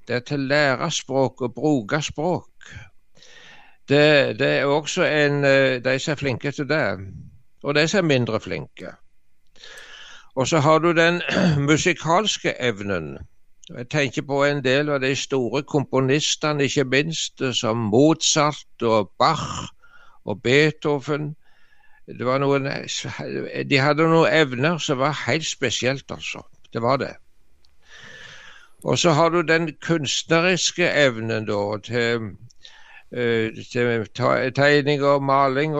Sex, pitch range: male, 130-155 Hz